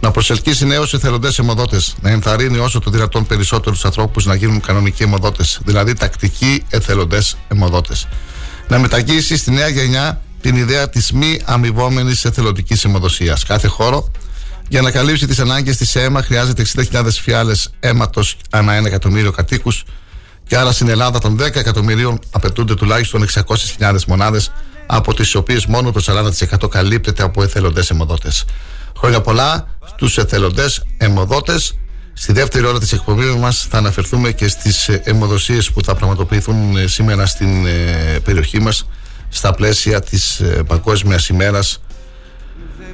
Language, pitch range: Greek, 95-120 Hz